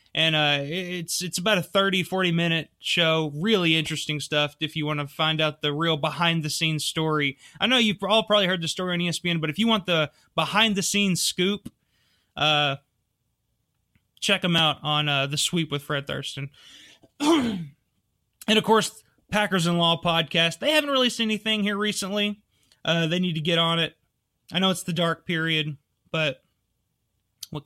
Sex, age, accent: male, 20-39, American